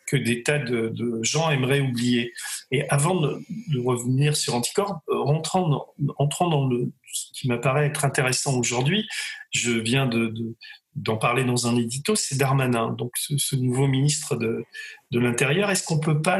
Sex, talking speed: male, 185 wpm